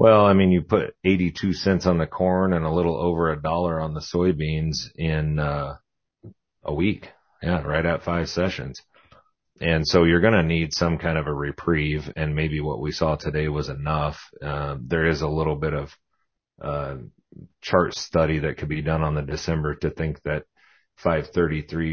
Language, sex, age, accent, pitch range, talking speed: English, male, 40-59, American, 75-85 Hz, 185 wpm